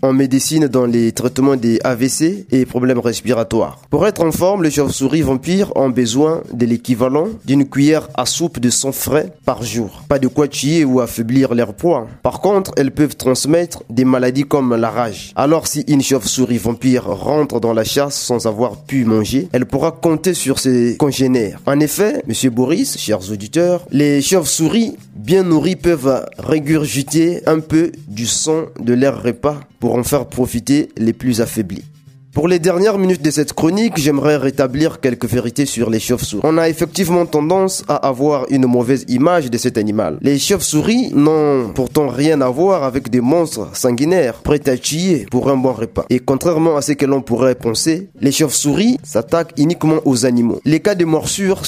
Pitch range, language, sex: 125-155 Hz, French, male